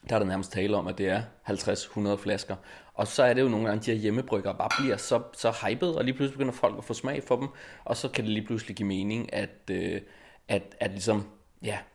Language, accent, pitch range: English, Danish, 105-130 Hz